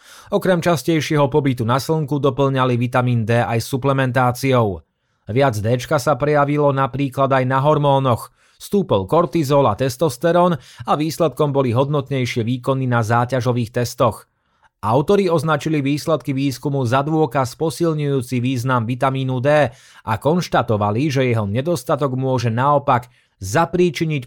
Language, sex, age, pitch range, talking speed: Slovak, male, 30-49, 120-155 Hz, 120 wpm